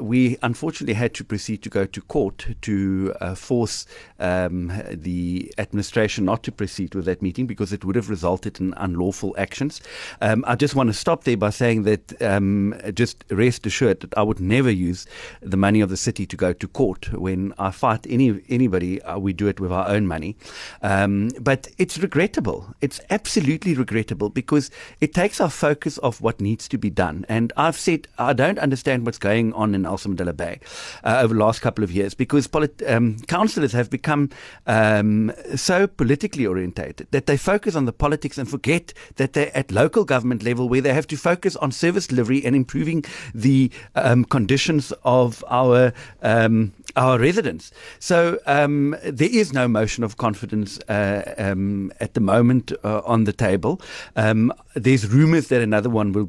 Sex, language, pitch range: male, English, 100-140 Hz